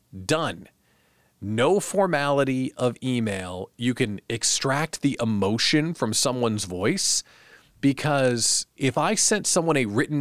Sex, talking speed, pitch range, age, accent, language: male, 120 wpm, 115-160 Hz, 40-59, American, English